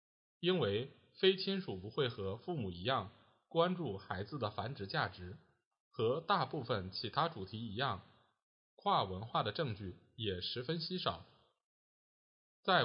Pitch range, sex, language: 105-165 Hz, male, Chinese